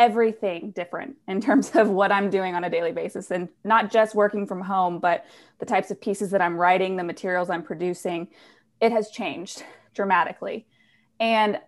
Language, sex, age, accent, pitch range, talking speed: English, female, 20-39, American, 190-220 Hz, 180 wpm